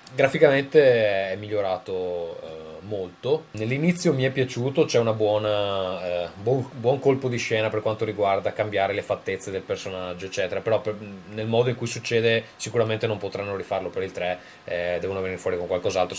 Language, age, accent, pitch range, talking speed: Italian, 20-39, native, 95-145 Hz, 170 wpm